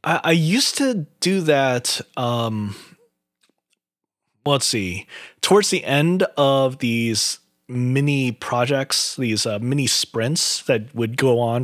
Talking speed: 120 wpm